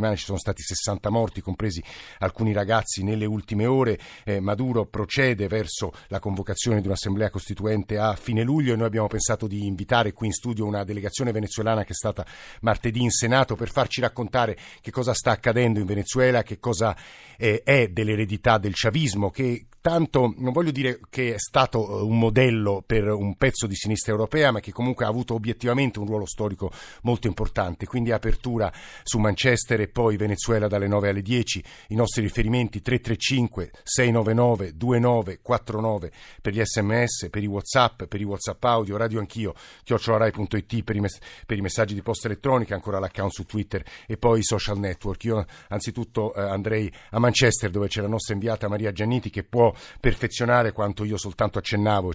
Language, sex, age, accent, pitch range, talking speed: Italian, male, 50-69, native, 100-120 Hz, 170 wpm